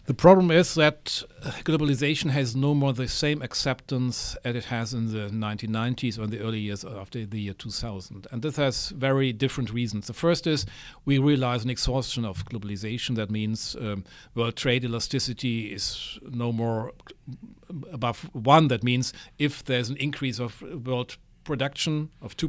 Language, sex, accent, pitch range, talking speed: English, male, German, 115-135 Hz, 165 wpm